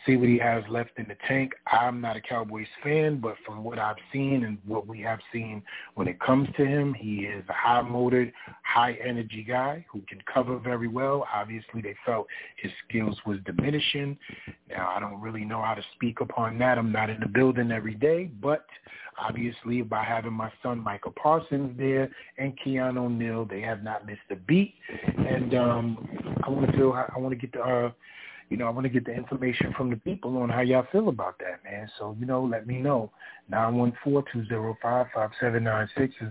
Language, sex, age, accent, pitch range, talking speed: English, male, 30-49, American, 110-130 Hz, 195 wpm